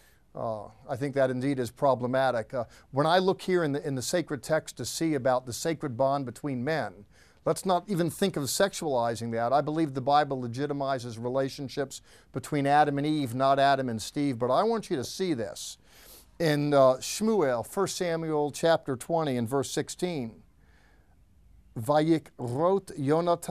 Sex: male